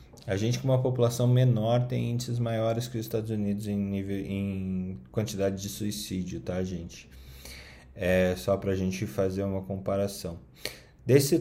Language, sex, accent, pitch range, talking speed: Portuguese, male, Brazilian, 100-130 Hz, 160 wpm